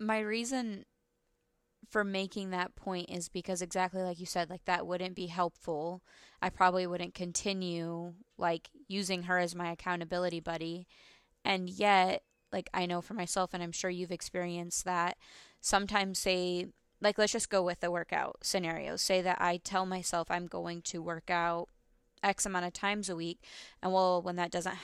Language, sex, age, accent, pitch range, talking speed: English, female, 20-39, American, 175-190 Hz, 175 wpm